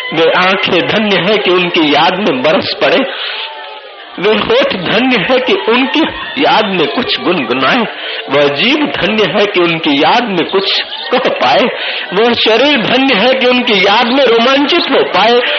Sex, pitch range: male, 205-270 Hz